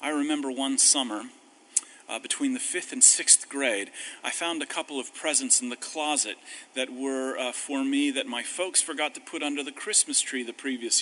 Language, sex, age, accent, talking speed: English, male, 40-59, American, 200 wpm